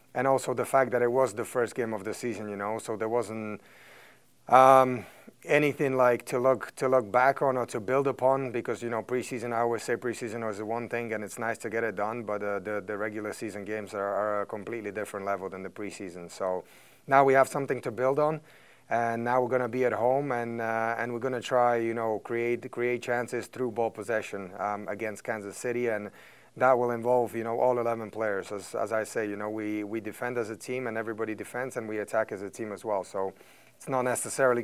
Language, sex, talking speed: English, male, 235 wpm